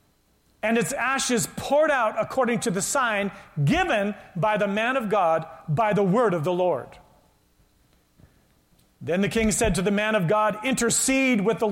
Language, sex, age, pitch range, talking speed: English, male, 40-59, 200-240 Hz, 170 wpm